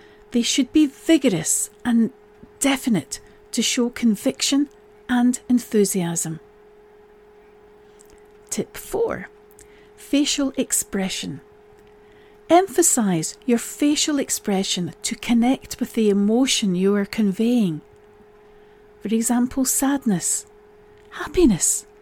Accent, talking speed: British, 85 wpm